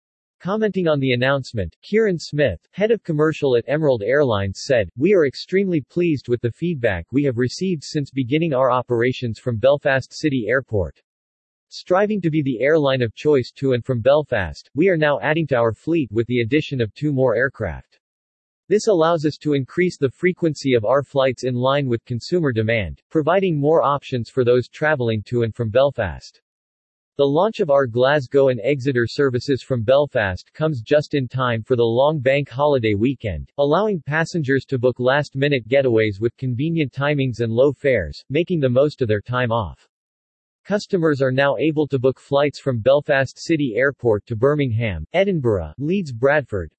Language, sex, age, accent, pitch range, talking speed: English, male, 40-59, American, 115-150 Hz, 175 wpm